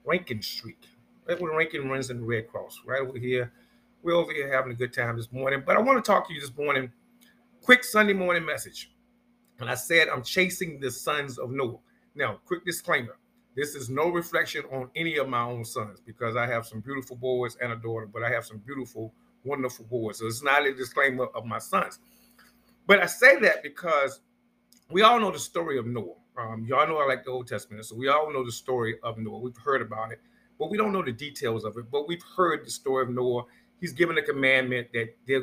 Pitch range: 120-175 Hz